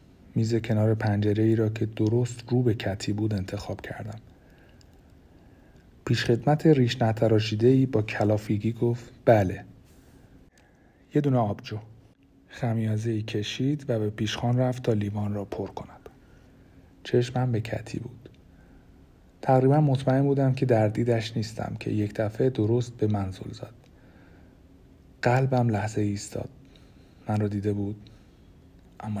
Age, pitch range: 40-59, 105-120 Hz